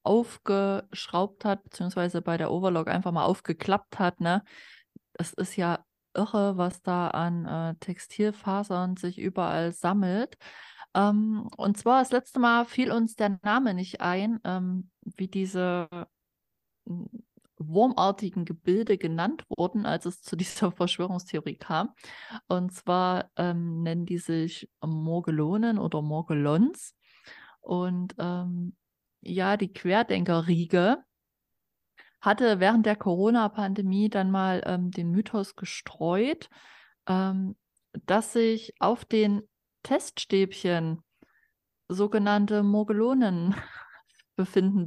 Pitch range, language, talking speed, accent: 180-215 Hz, German, 110 wpm, German